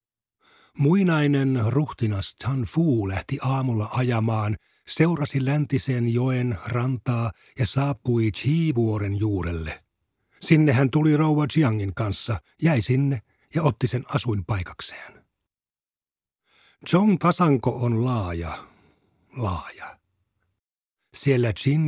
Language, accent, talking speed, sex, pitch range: Finnish, native, 95 wpm, male, 105-150 Hz